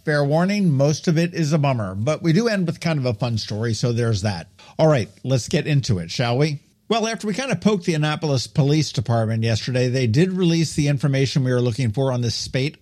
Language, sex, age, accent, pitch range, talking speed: English, male, 50-69, American, 115-160 Hz, 245 wpm